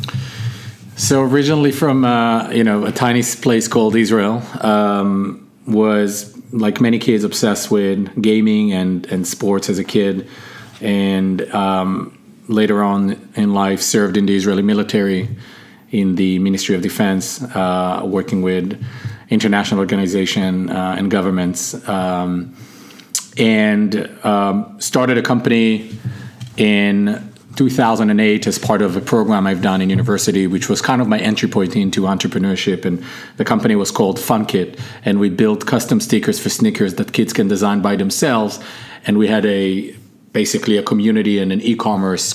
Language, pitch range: English, 95-115 Hz